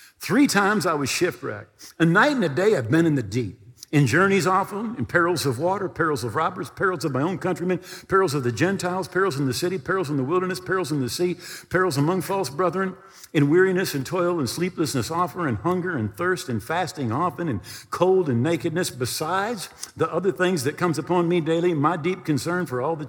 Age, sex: 50-69, male